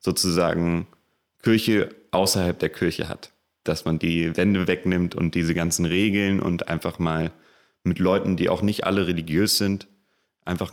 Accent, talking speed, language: German, 150 wpm, German